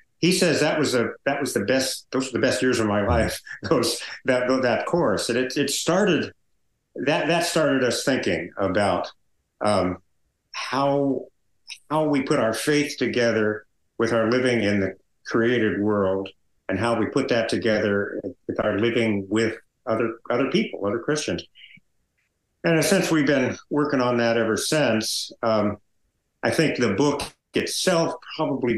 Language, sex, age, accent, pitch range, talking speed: English, male, 60-79, American, 105-130 Hz, 160 wpm